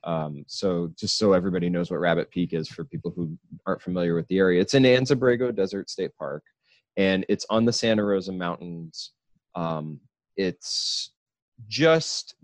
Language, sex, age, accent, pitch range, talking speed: English, male, 30-49, American, 85-110 Hz, 170 wpm